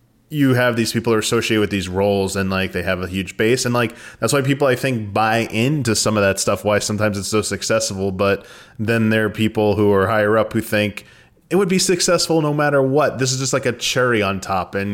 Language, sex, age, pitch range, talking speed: English, male, 20-39, 100-120 Hz, 245 wpm